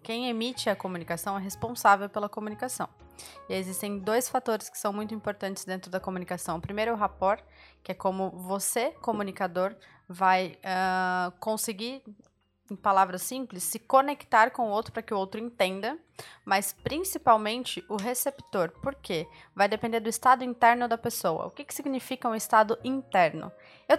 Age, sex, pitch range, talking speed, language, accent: 20-39, female, 190-235 Hz, 170 wpm, Portuguese, Brazilian